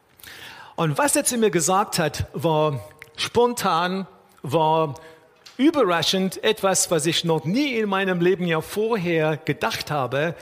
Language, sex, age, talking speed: German, male, 50-69, 130 wpm